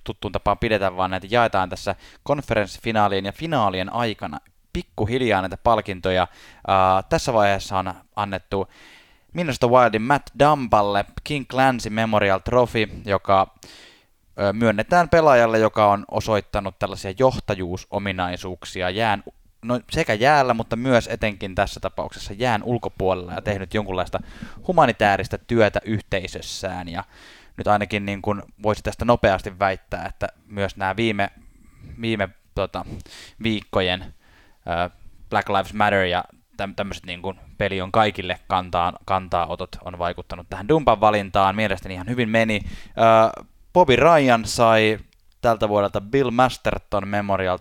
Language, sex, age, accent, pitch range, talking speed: Finnish, male, 20-39, native, 95-115 Hz, 120 wpm